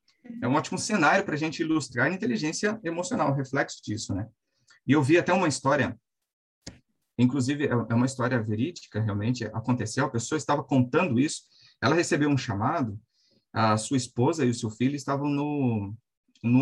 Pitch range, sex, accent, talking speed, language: 125-165 Hz, male, Brazilian, 170 wpm, Portuguese